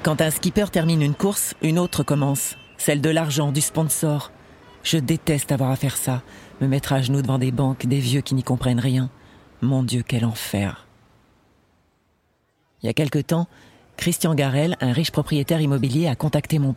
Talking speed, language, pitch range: 185 wpm, French, 120-155 Hz